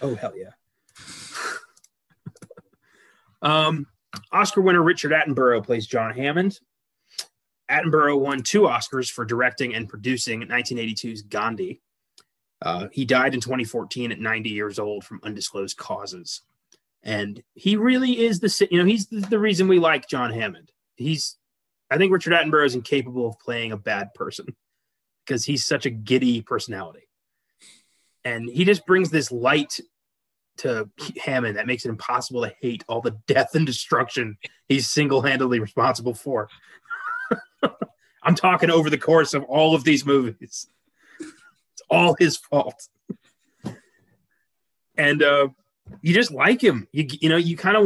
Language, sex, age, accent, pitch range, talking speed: English, male, 30-49, American, 125-175 Hz, 145 wpm